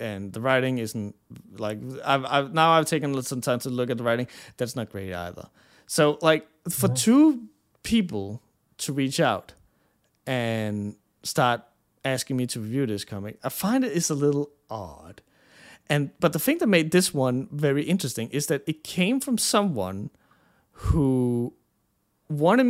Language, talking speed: English, 165 wpm